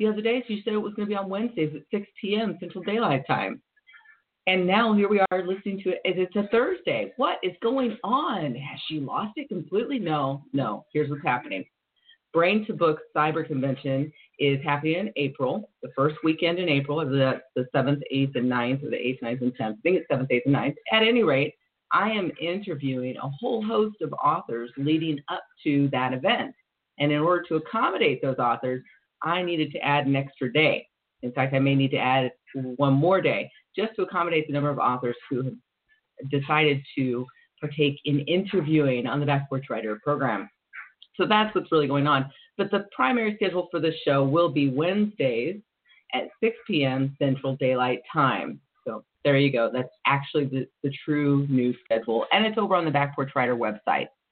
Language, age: English, 40-59